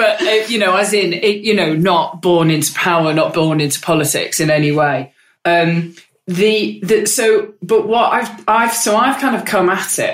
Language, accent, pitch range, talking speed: English, British, 160-210 Hz, 205 wpm